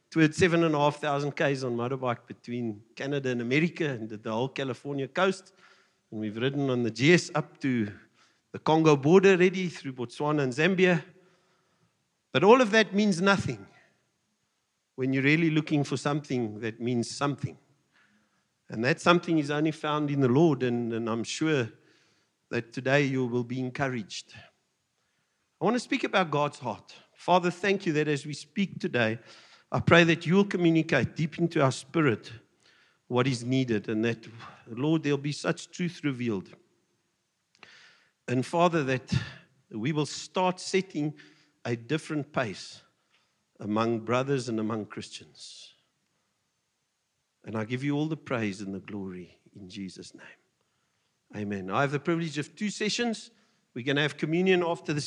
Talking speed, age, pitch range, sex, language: 155 wpm, 50-69, 120-170 Hz, male, English